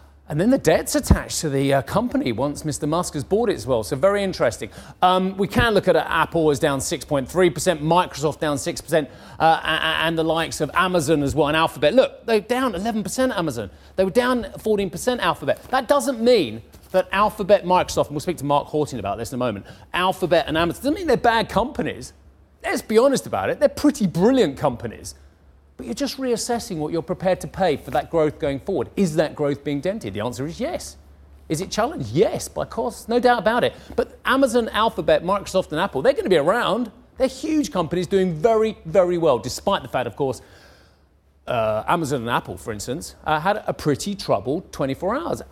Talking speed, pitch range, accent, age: 205 wpm, 145-215 Hz, British, 30-49